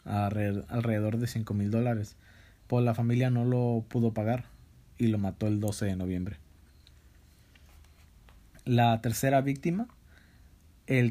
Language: Spanish